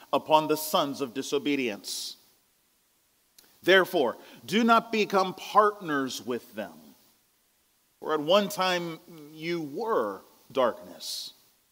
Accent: American